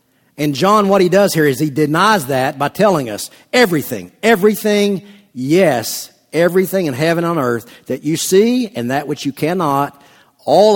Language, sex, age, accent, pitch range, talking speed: English, male, 50-69, American, 130-190 Hz, 175 wpm